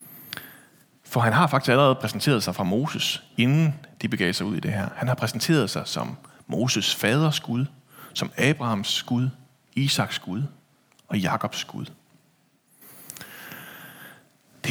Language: Danish